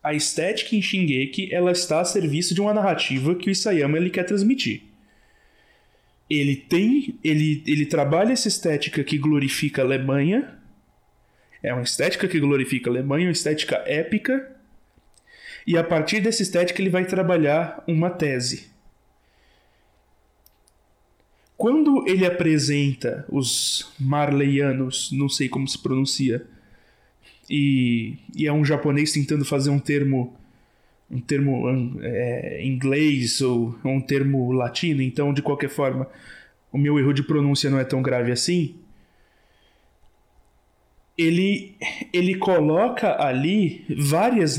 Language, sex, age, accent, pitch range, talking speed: Portuguese, male, 20-39, Brazilian, 135-185 Hz, 130 wpm